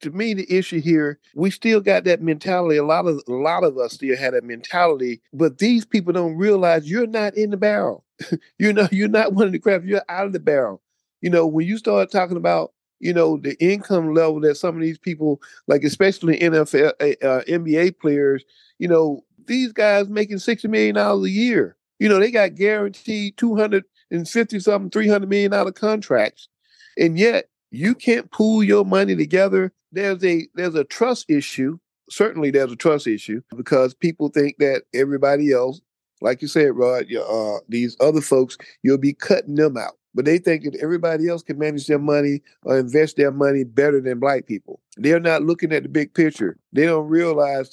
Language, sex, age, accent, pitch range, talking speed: English, male, 50-69, American, 145-200 Hz, 195 wpm